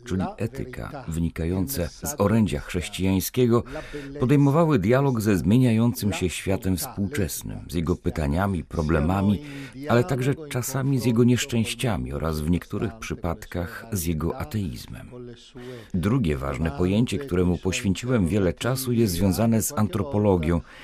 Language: Polish